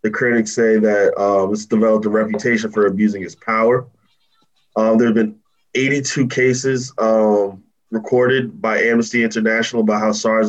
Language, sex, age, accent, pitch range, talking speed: English, male, 20-39, American, 105-120 Hz, 155 wpm